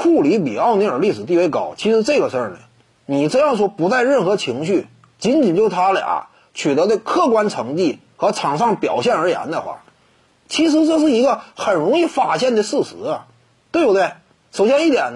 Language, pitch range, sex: Chinese, 190-310 Hz, male